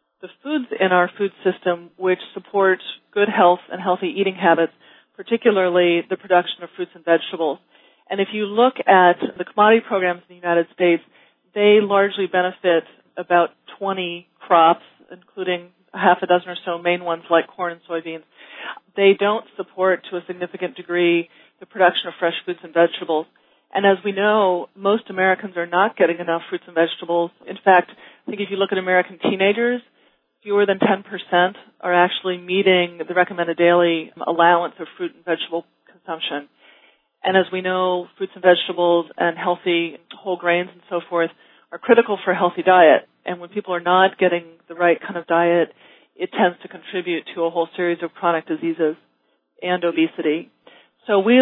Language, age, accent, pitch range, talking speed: English, 40-59, American, 170-195 Hz, 175 wpm